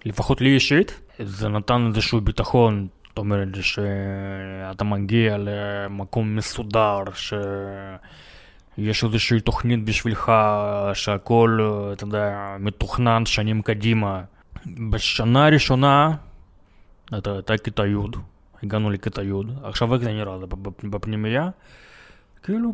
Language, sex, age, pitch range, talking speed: Hebrew, male, 20-39, 100-120 Hz, 90 wpm